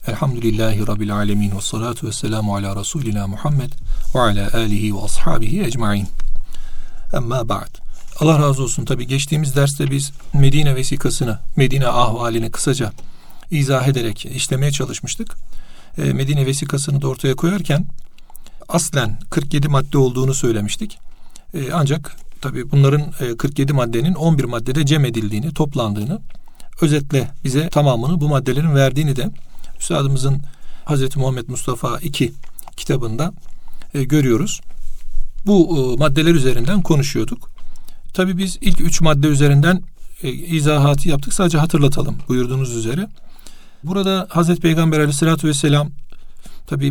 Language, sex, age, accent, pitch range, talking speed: Turkish, male, 40-59, native, 125-160 Hz, 115 wpm